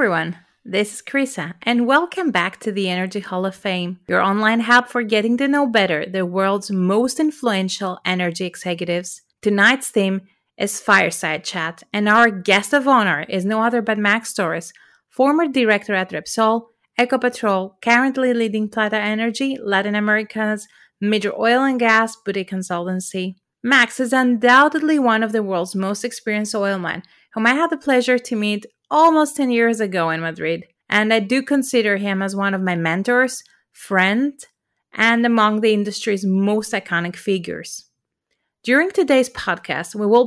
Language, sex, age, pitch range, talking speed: English, female, 30-49, 190-245 Hz, 160 wpm